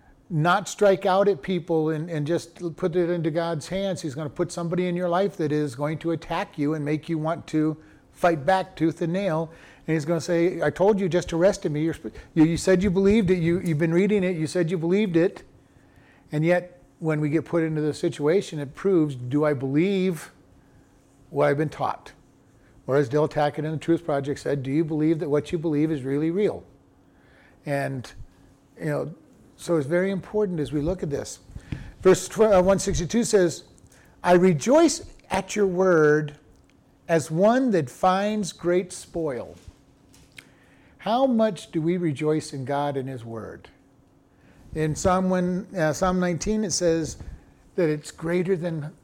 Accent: American